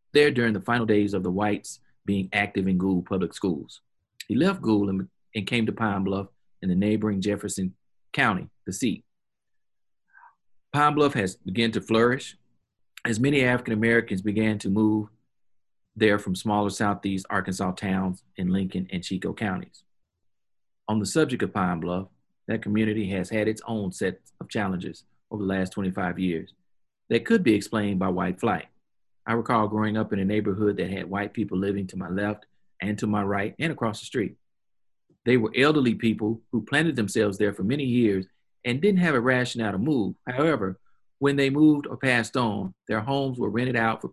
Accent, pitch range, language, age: American, 95-115 Hz, English, 40-59